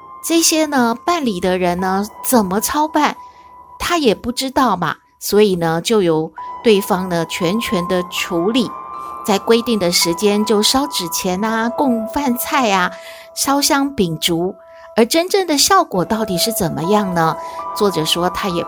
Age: 50-69